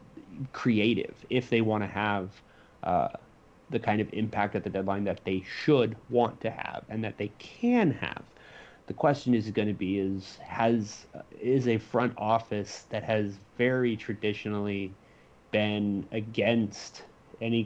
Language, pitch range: English, 105-120 Hz